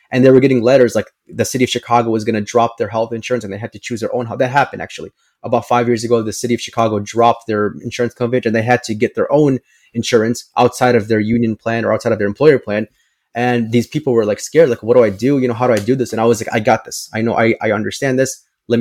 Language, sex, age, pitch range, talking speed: English, male, 20-39, 115-135 Hz, 285 wpm